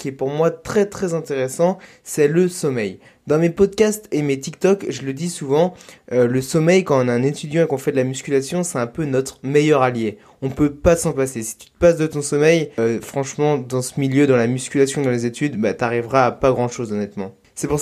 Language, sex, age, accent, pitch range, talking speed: French, male, 20-39, French, 130-165 Hz, 245 wpm